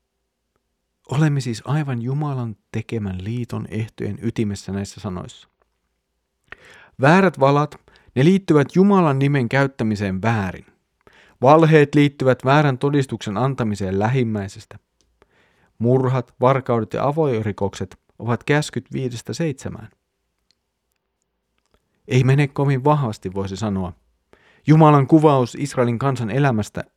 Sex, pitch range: male, 105-140 Hz